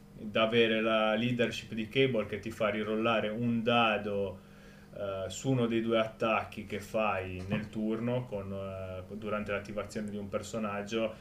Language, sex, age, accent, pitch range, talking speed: Italian, male, 20-39, native, 100-120 Hz, 155 wpm